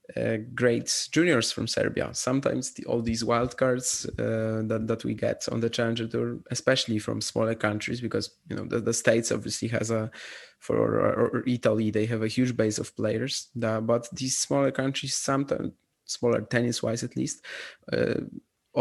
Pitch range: 110-125 Hz